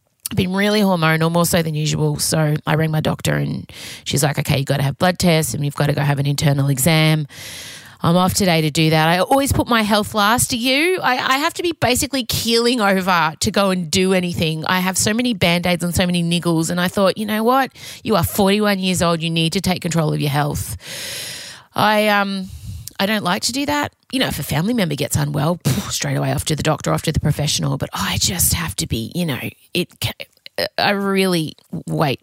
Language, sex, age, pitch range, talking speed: English, female, 30-49, 145-190 Hz, 235 wpm